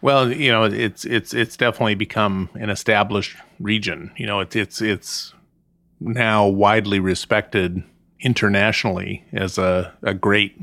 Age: 30-49